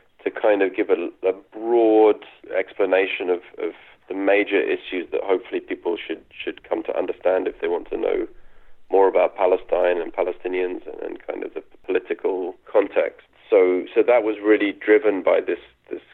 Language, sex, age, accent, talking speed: English, male, 30-49, British, 170 wpm